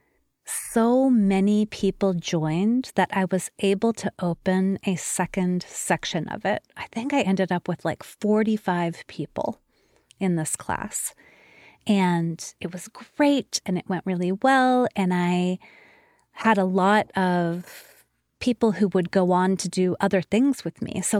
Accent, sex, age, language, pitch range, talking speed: American, female, 30-49, English, 180-245 Hz, 155 wpm